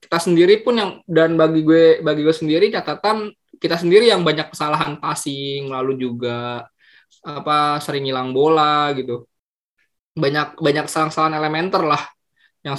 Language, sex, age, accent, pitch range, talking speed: English, male, 20-39, Indonesian, 125-150 Hz, 140 wpm